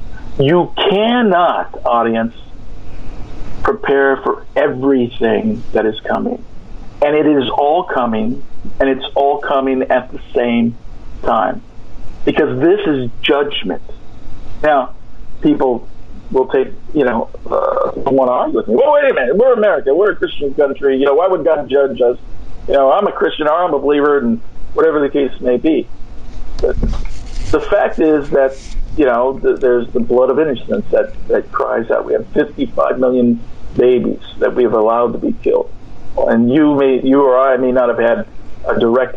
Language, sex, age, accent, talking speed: English, male, 50-69, American, 165 wpm